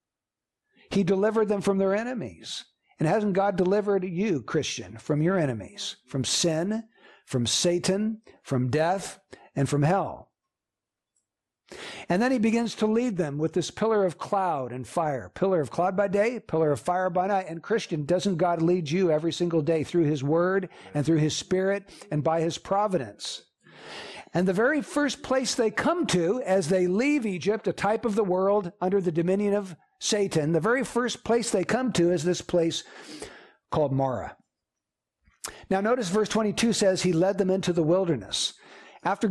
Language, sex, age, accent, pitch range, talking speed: English, male, 60-79, American, 170-220 Hz, 175 wpm